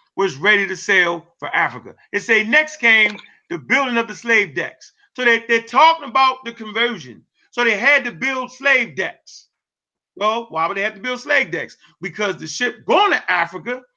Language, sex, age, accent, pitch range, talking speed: English, male, 40-59, American, 200-265 Hz, 190 wpm